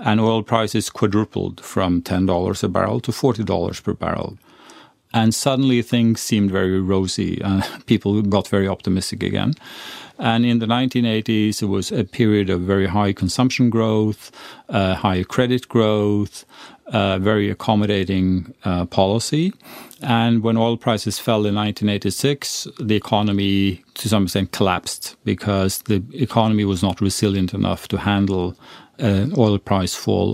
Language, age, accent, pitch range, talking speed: English, 40-59, Norwegian, 100-115 Hz, 140 wpm